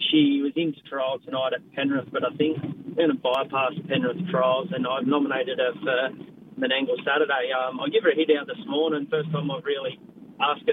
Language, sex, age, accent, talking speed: English, male, 30-49, Australian, 215 wpm